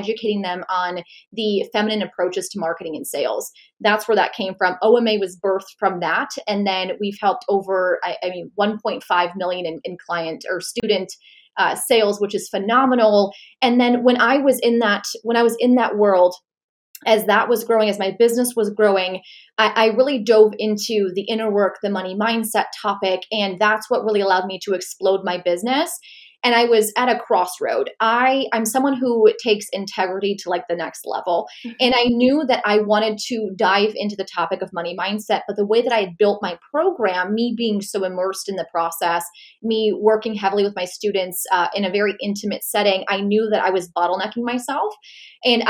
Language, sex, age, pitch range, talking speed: English, female, 20-39, 190-230 Hz, 195 wpm